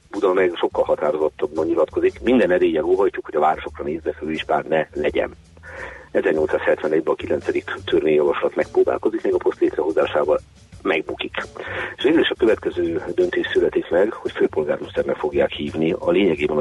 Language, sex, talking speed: Hungarian, male, 135 wpm